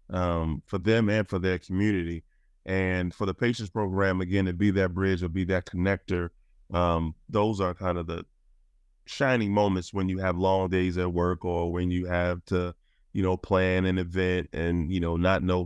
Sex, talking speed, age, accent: male, 195 wpm, 20-39, American